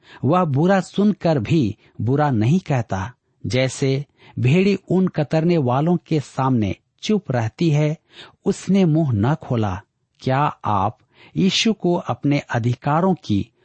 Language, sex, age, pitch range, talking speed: Hindi, male, 50-69, 120-165 Hz, 125 wpm